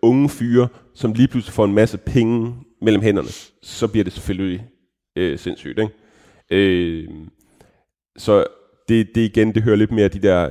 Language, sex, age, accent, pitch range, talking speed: Danish, male, 30-49, native, 90-110 Hz, 165 wpm